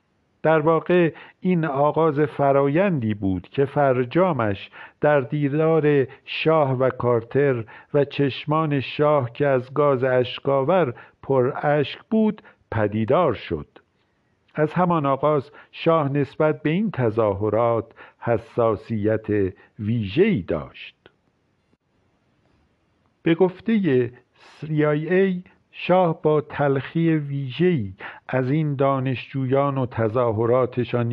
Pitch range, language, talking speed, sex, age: 120-155 Hz, Persian, 95 wpm, male, 50-69